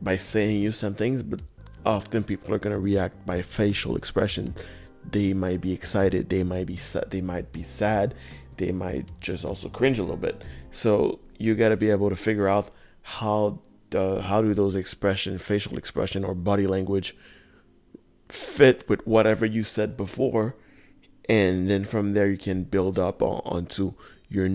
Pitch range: 90-105 Hz